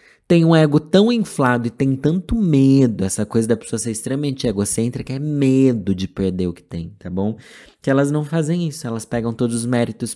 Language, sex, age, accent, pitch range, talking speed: Portuguese, male, 20-39, Brazilian, 100-140 Hz, 205 wpm